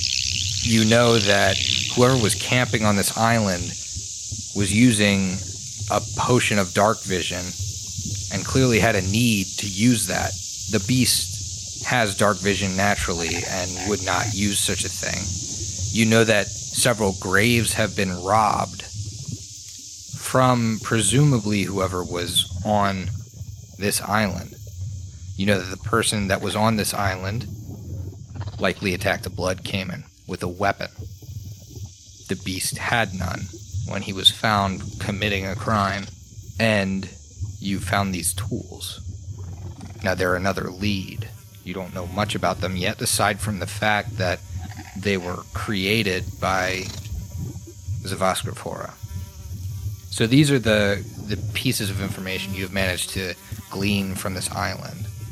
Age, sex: 30-49, male